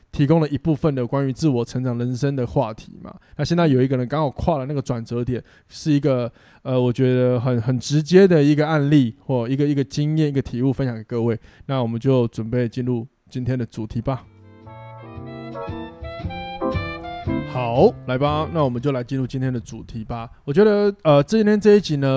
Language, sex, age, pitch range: Chinese, male, 20-39, 120-150 Hz